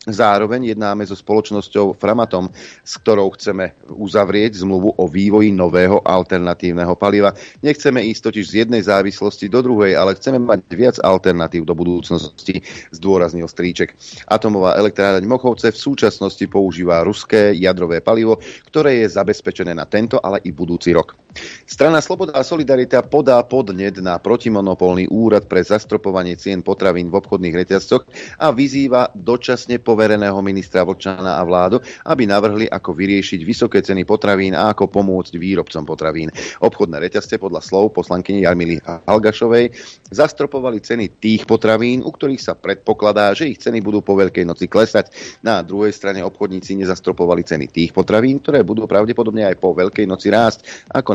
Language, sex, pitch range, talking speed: Slovak, male, 90-110 Hz, 150 wpm